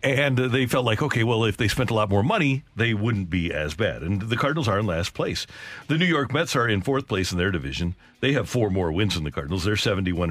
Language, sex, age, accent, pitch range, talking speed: English, male, 50-69, American, 100-135 Hz, 270 wpm